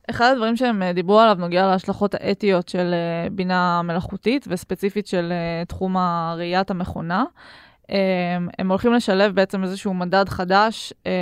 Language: Hebrew